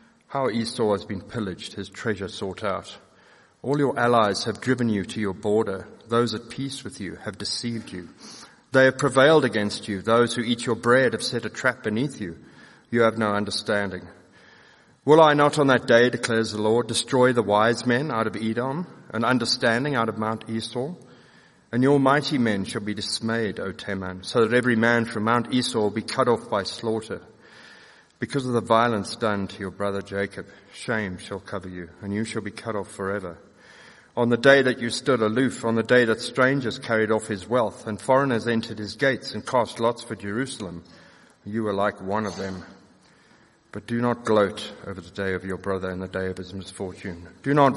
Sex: male